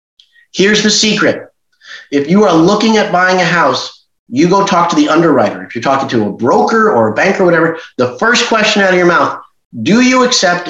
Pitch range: 140-200 Hz